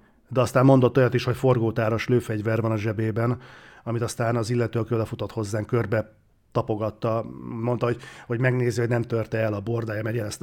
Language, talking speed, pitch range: Hungarian, 180 wpm, 110-125 Hz